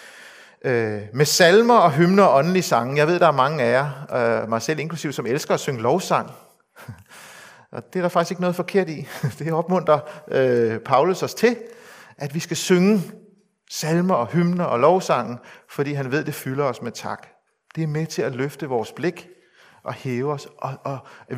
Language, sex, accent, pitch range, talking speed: Danish, male, native, 125-165 Hz, 195 wpm